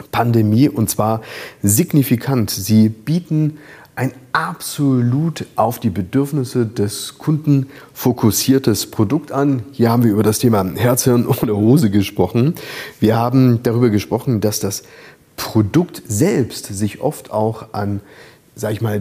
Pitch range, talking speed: 105-140 Hz, 135 wpm